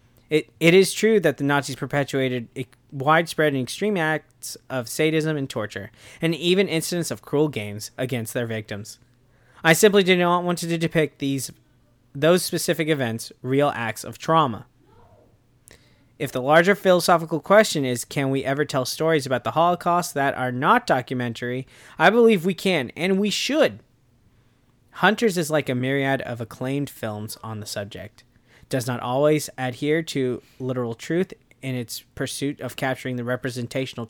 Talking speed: 160 wpm